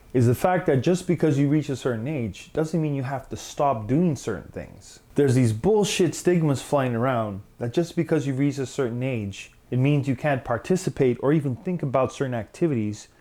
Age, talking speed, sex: 30-49, 205 wpm, male